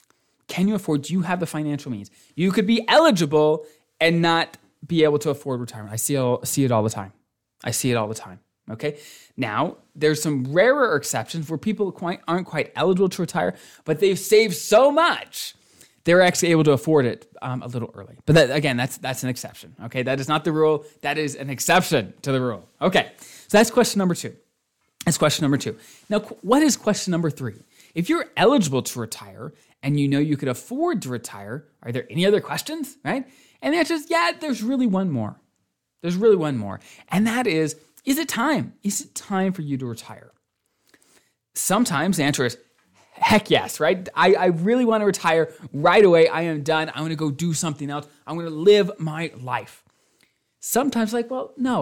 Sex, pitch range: male, 135-190 Hz